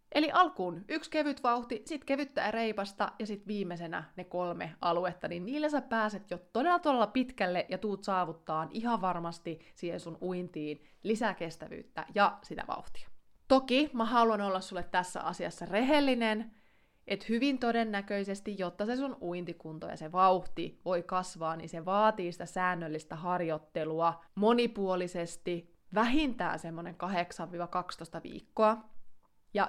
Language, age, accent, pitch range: Finnish, 20-39, native, 170-220 Hz